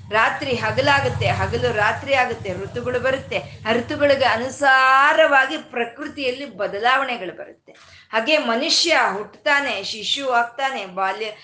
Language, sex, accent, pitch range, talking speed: Kannada, female, native, 210-295 Hz, 95 wpm